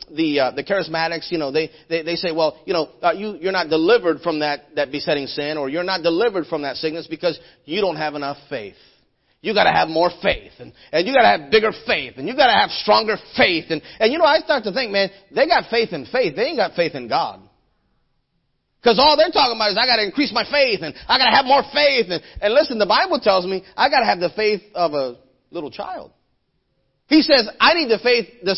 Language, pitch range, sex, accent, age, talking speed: English, 165-265 Hz, male, American, 30-49, 240 wpm